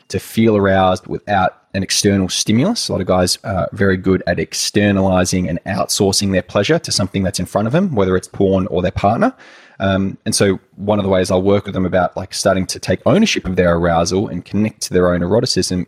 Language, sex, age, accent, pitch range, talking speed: English, male, 20-39, Australian, 95-115 Hz, 225 wpm